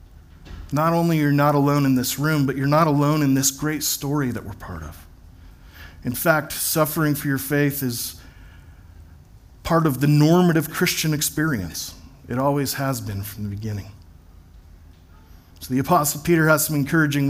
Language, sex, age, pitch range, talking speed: English, male, 40-59, 85-145 Hz, 165 wpm